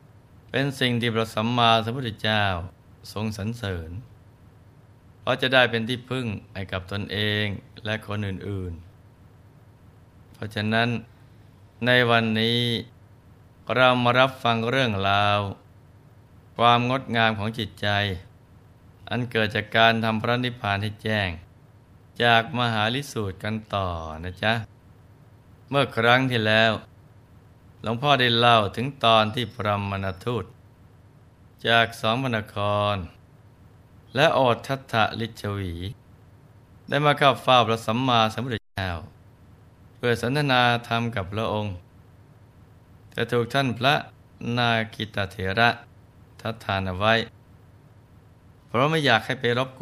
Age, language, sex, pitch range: 20-39, Thai, male, 100-120 Hz